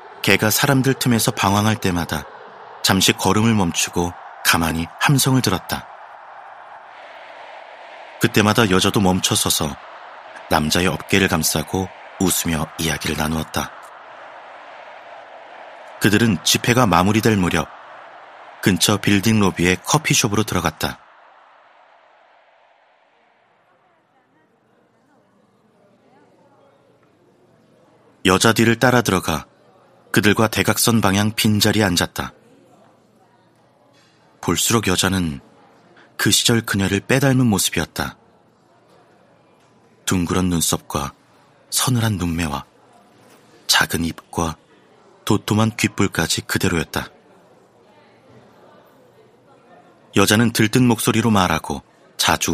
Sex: male